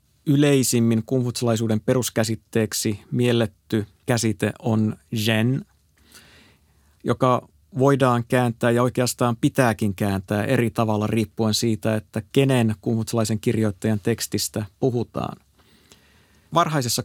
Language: Finnish